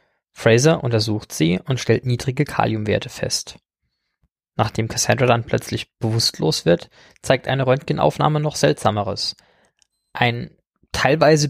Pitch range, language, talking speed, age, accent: 115-150 Hz, German, 110 wpm, 20-39, German